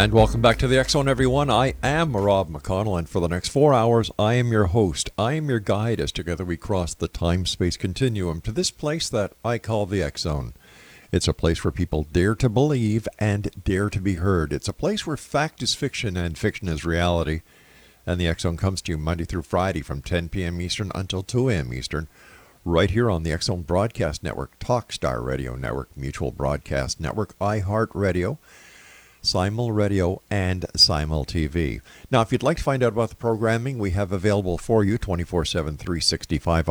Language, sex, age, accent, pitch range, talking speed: English, male, 50-69, American, 80-110 Hz, 195 wpm